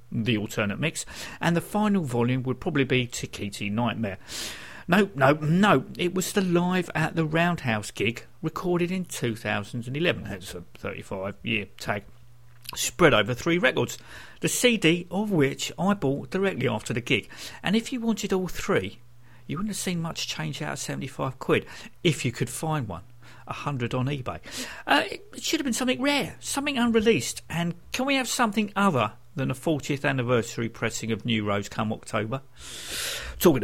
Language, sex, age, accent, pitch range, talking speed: English, male, 50-69, British, 120-180 Hz, 170 wpm